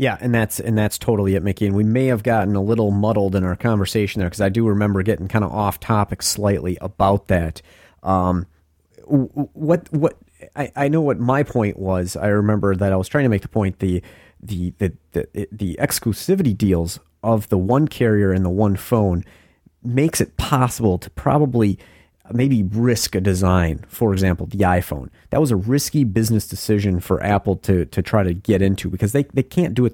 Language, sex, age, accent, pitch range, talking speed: English, male, 30-49, American, 95-120 Hz, 200 wpm